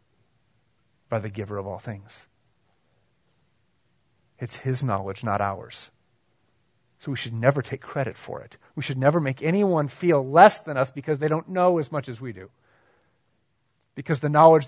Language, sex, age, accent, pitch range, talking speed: English, male, 30-49, American, 130-170 Hz, 165 wpm